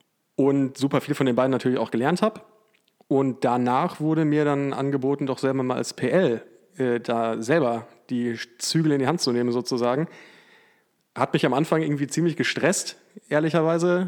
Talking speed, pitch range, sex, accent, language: 170 wpm, 125-155 Hz, male, German, German